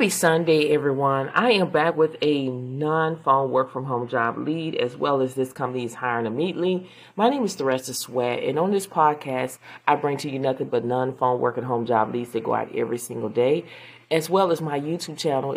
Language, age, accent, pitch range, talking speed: English, 30-49, American, 120-155 Hz, 200 wpm